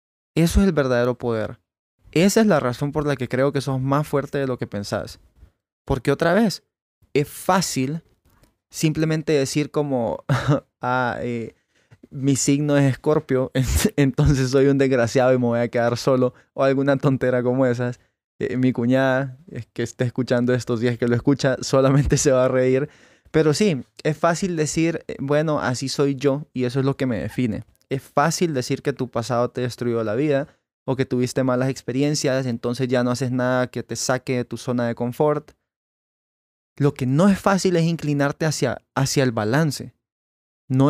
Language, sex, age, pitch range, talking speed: Spanish, male, 20-39, 125-145 Hz, 180 wpm